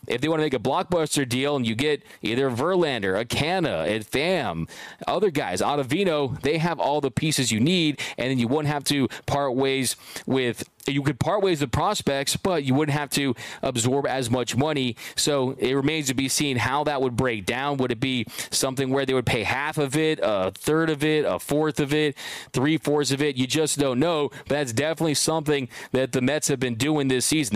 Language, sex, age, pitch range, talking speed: English, male, 30-49, 130-155 Hz, 215 wpm